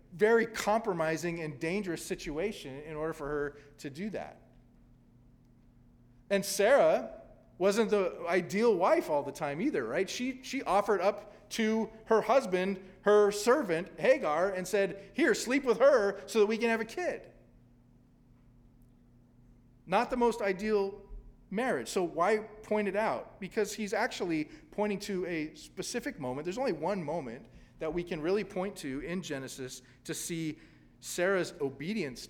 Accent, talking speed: American, 150 wpm